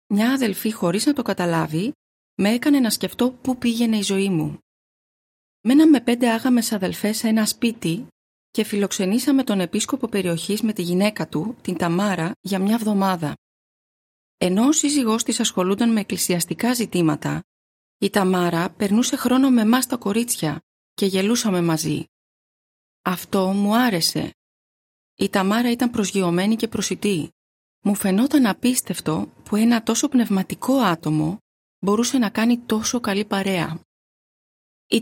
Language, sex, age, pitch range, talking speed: Greek, female, 30-49, 175-235 Hz, 135 wpm